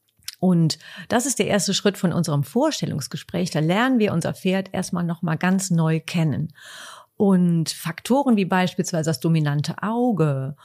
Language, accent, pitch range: German, German, 165-230 Hz